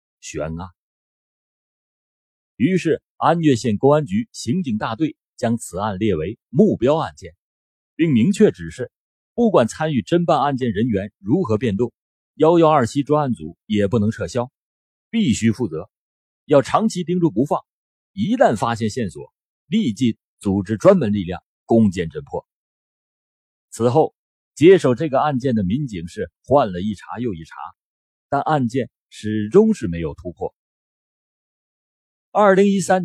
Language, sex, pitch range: Chinese, male, 100-165 Hz